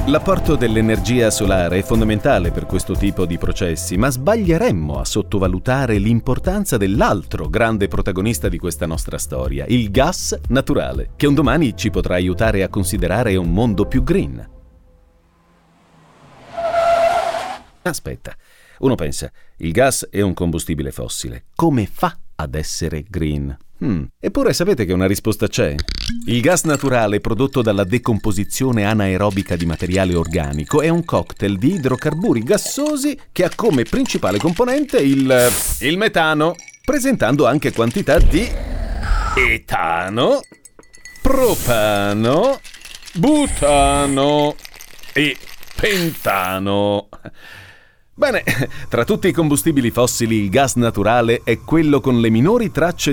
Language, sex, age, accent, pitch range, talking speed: Italian, male, 40-59, native, 95-140 Hz, 120 wpm